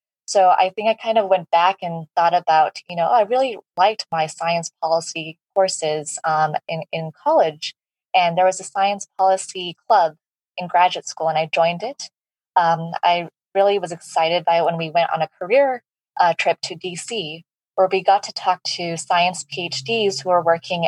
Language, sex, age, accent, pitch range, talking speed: English, female, 20-39, American, 165-190 Hz, 190 wpm